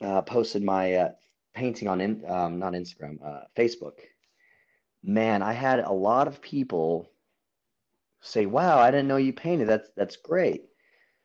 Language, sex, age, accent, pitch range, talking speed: English, male, 30-49, American, 95-135 Hz, 150 wpm